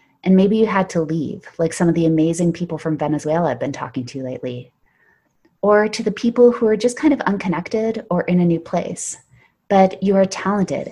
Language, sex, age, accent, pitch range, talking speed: English, female, 30-49, American, 155-205 Hz, 210 wpm